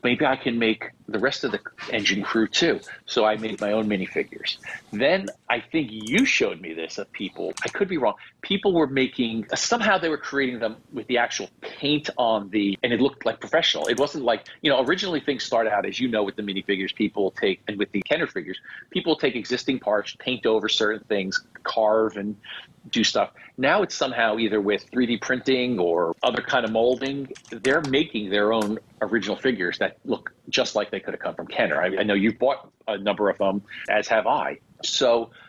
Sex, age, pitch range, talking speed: male, 40-59, 105-130 Hz, 210 wpm